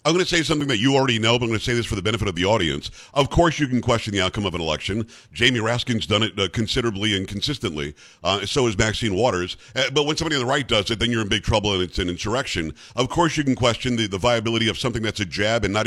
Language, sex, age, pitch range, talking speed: English, male, 50-69, 110-145 Hz, 290 wpm